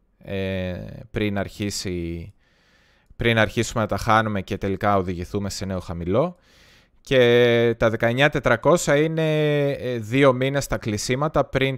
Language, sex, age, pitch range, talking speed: Greek, male, 20-39, 95-125 Hz, 105 wpm